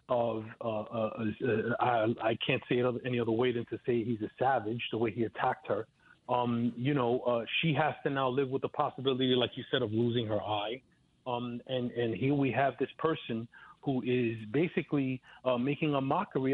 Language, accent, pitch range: English, American, 115-150 Hz